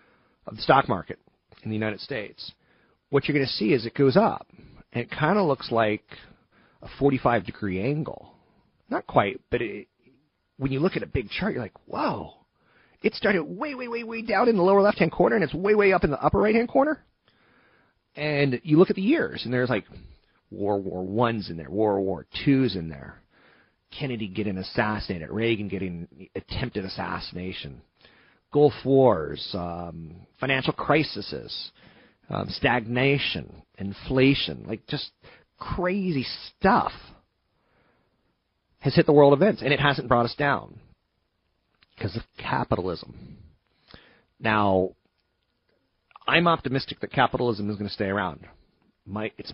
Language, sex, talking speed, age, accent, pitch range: English, male, 155 wpm, 30-49, American, 105-150 Hz